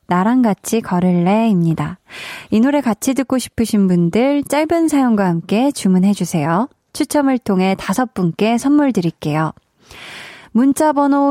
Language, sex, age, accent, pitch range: Korean, female, 20-39, native, 190-275 Hz